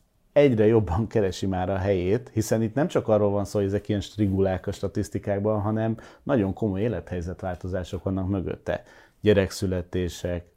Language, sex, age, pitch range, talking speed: Hungarian, male, 30-49, 95-110 Hz, 150 wpm